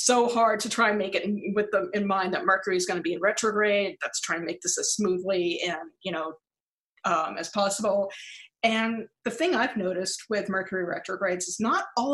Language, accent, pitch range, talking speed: English, American, 180-215 Hz, 215 wpm